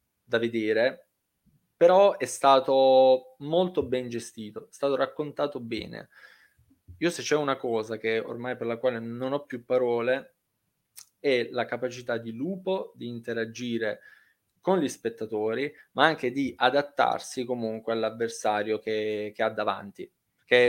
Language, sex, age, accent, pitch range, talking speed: Italian, male, 20-39, native, 115-130 Hz, 135 wpm